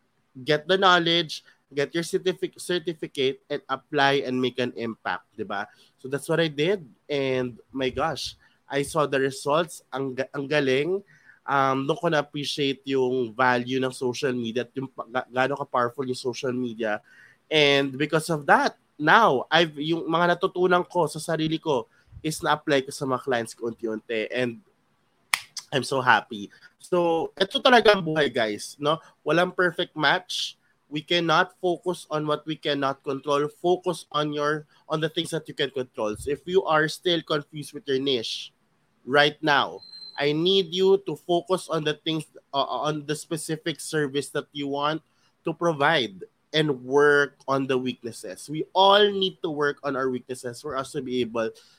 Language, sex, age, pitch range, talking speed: Filipino, male, 20-39, 130-165 Hz, 165 wpm